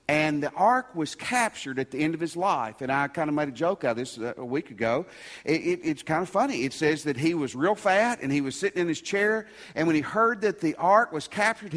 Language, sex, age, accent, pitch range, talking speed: English, male, 50-69, American, 140-190 Hz, 260 wpm